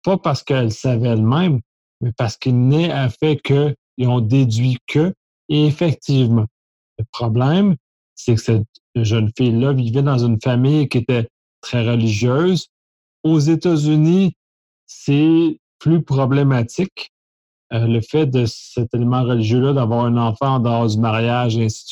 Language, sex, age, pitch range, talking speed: French, male, 40-59, 120-150 Hz, 155 wpm